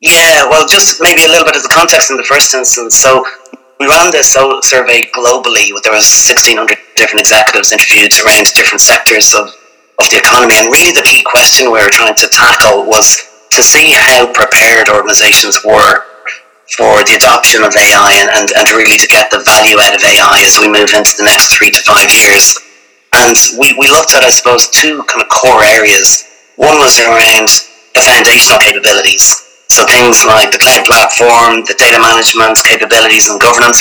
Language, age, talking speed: English, 30-49, 190 wpm